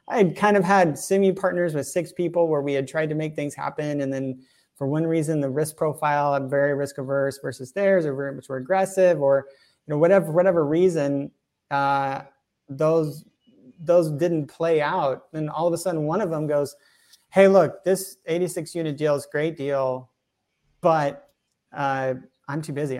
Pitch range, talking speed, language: 135-165 Hz, 190 wpm, English